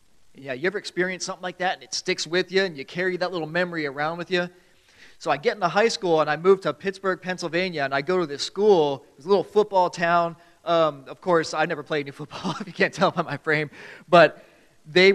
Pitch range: 145-180 Hz